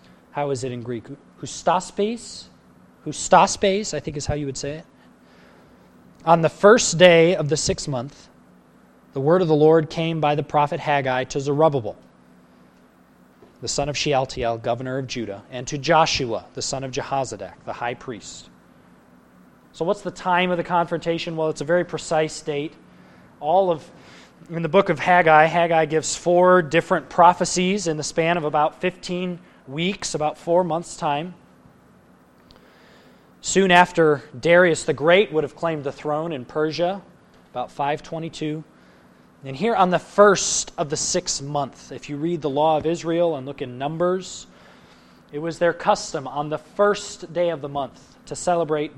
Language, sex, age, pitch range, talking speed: English, male, 20-39, 140-175 Hz, 165 wpm